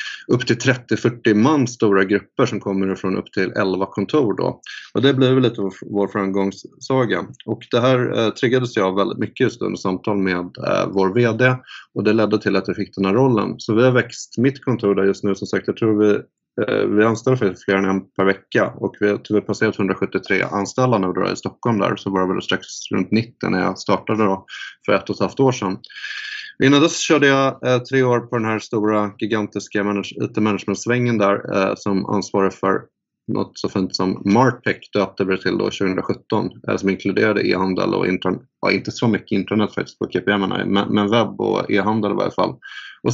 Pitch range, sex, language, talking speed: 95-120 Hz, male, Swedish, 195 wpm